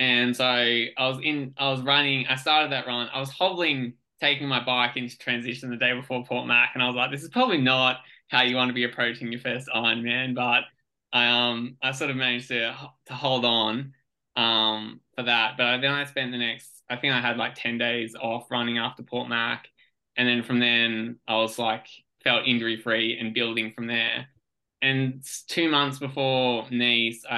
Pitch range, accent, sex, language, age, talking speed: 115-130 Hz, Australian, male, English, 20-39, 205 wpm